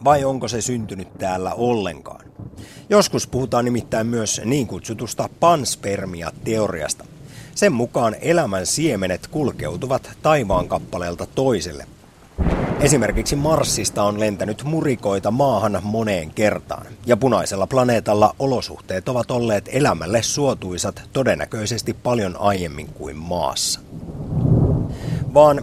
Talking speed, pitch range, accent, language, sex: 105 wpm, 100-135 Hz, native, Finnish, male